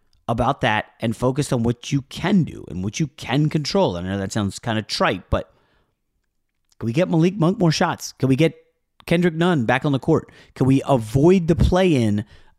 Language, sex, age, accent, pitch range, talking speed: English, male, 30-49, American, 110-160 Hz, 205 wpm